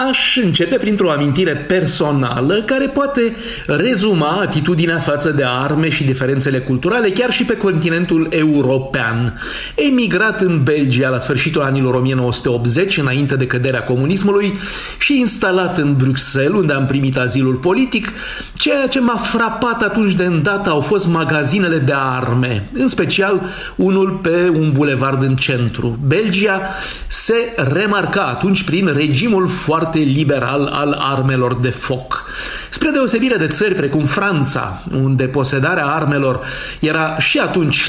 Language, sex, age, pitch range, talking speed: Romanian, male, 40-59, 135-200 Hz, 135 wpm